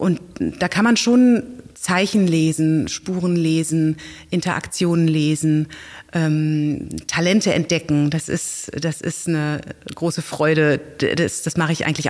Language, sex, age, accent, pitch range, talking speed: German, female, 30-49, German, 150-170 Hz, 125 wpm